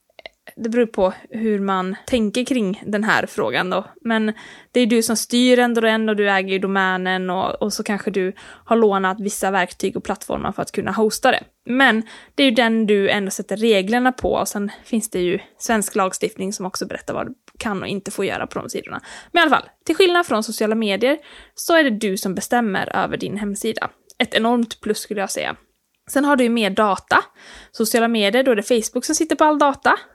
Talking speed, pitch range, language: 220 wpm, 200-260 Hz, Swedish